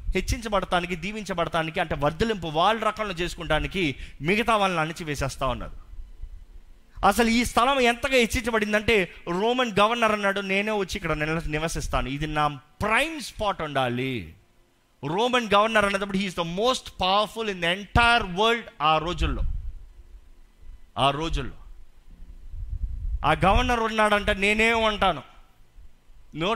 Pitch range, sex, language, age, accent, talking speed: 125-210 Hz, male, Telugu, 30-49, native, 110 wpm